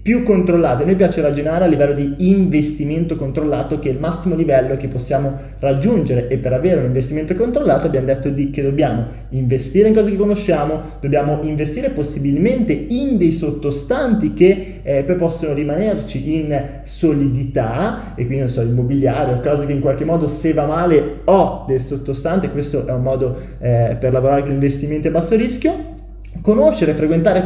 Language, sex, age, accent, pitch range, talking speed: Italian, male, 20-39, native, 140-180 Hz, 175 wpm